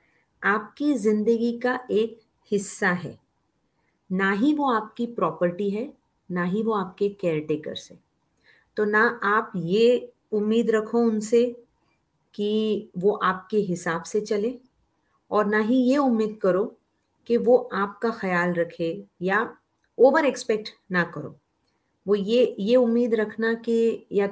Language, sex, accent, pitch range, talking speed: Hindi, female, native, 180-220 Hz, 135 wpm